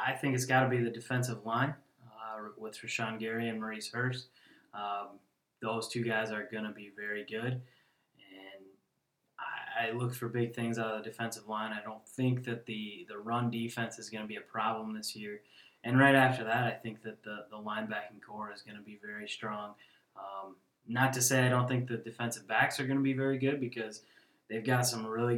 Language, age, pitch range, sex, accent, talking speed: English, 20-39, 110-125 Hz, male, American, 220 wpm